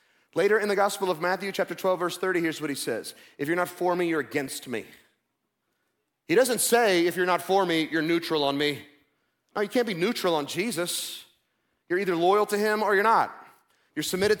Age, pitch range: 30-49, 160-205 Hz